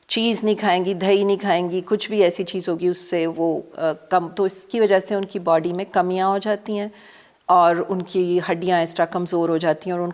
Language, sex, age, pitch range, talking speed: Urdu, female, 40-59, 170-205 Hz, 250 wpm